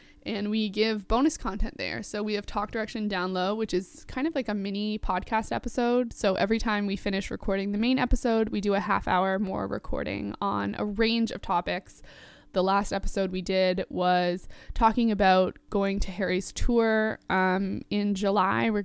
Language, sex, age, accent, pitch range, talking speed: English, female, 20-39, American, 190-220 Hz, 190 wpm